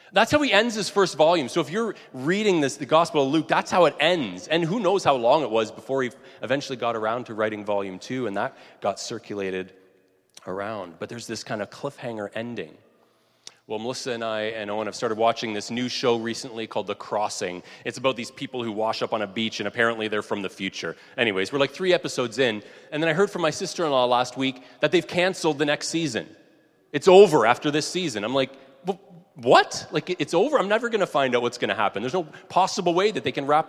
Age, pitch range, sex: 30-49, 115-175 Hz, male